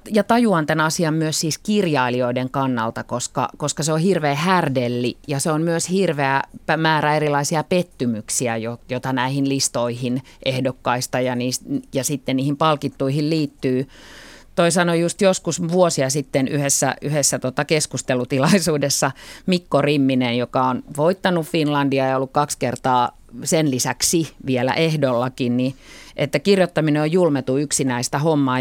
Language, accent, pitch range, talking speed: Finnish, native, 135-170 Hz, 135 wpm